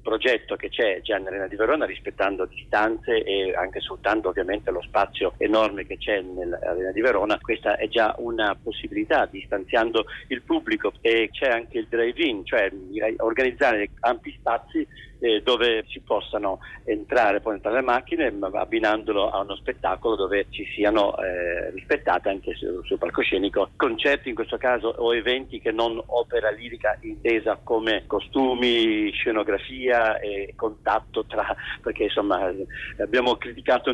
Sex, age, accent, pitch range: male, 50-69, native, 115-190 Hz